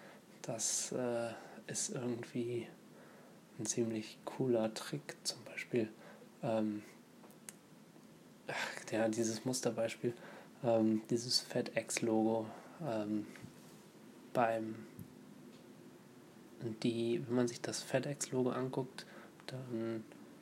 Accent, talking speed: German, 80 wpm